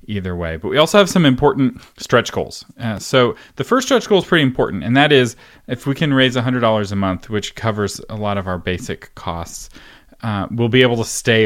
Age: 30-49